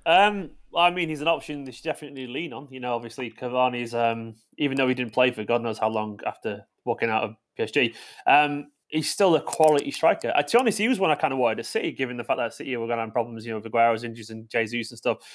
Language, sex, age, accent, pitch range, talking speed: English, male, 20-39, British, 125-160 Hz, 270 wpm